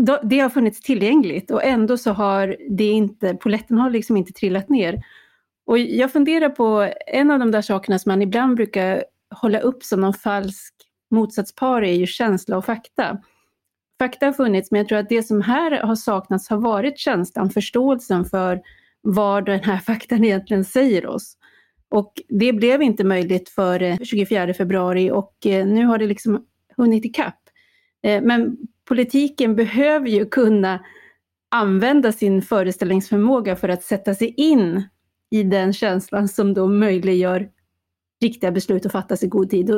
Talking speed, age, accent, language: 160 wpm, 30-49, native, Swedish